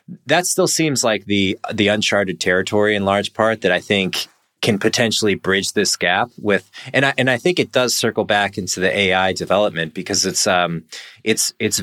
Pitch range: 95-120 Hz